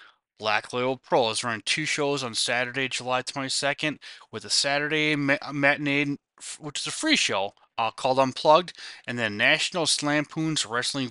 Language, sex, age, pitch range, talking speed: English, male, 20-39, 120-150 Hz, 150 wpm